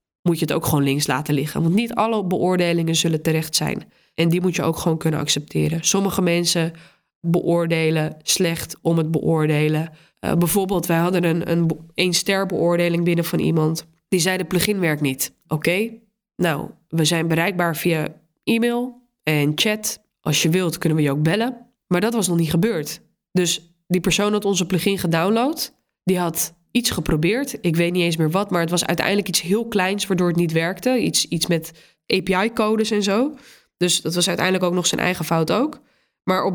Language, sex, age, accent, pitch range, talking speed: Dutch, female, 20-39, Dutch, 165-200 Hz, 190 wpm